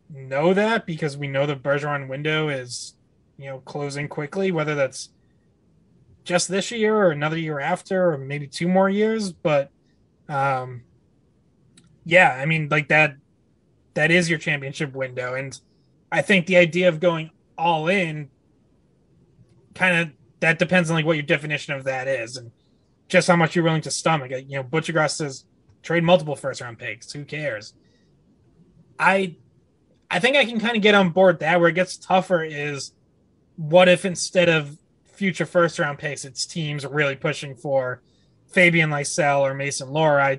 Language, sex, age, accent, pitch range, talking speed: English, male, 20-39, American, 135-180 Hz, 170 wpm